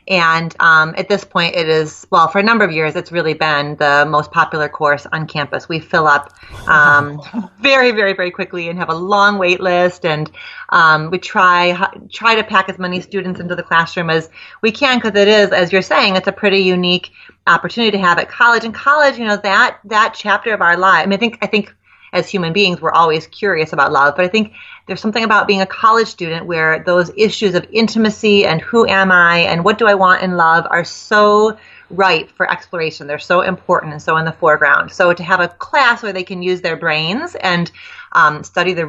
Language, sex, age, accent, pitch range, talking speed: English, female, 30-49, American, 165-210 Hz, 225 wpm